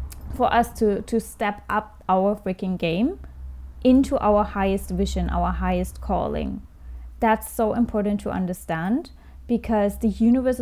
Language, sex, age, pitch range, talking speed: English, female, 20-39, 205-255 Hz, 135 wpm